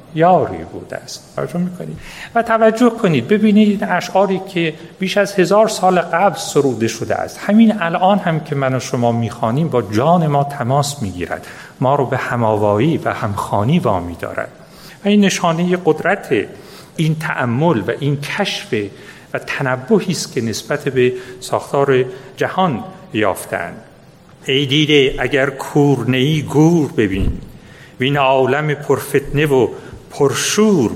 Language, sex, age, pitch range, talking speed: Persian, male, 40-59, 130-190 Hz, 135 wpm